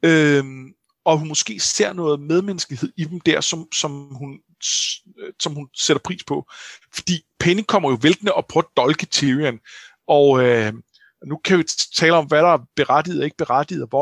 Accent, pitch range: native, 140-190 Hz